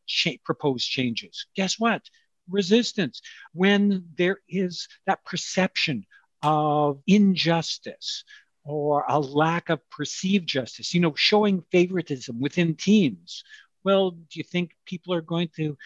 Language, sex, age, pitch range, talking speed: English, male, 60-79, 140-190 Hz, 120 wpm